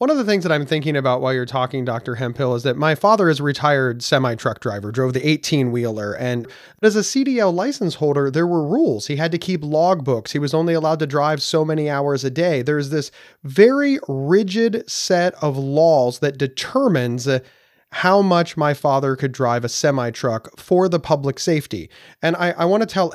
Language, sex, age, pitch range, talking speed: English, male, 30-49, 135-180 Hz, 200 wpm